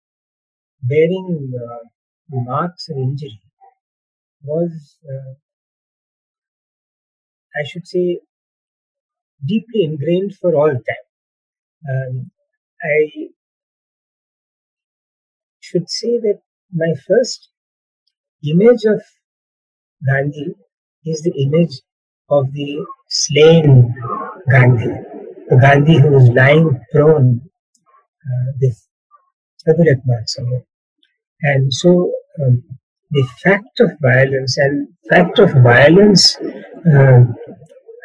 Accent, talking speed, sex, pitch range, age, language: native, 85 wpm, male, 135-200 Hz, 50-69, Hindi